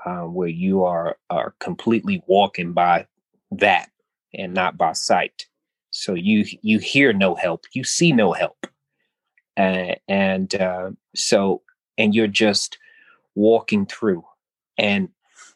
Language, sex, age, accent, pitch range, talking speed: English, male, 30-49, American, 100-125 Hz, 125 wpm